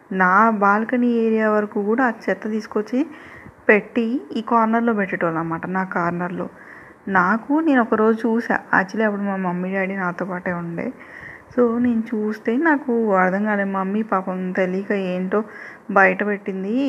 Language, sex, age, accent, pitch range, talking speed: Telugu, female, 20-39, native, 185-230 Hz, 135 wpm